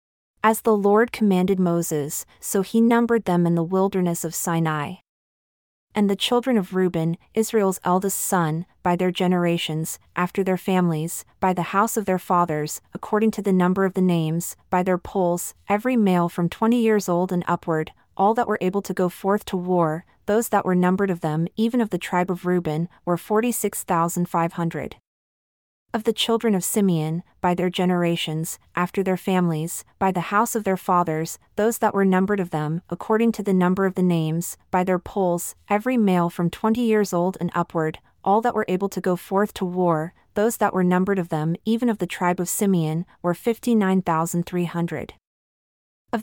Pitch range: 175-205 Hz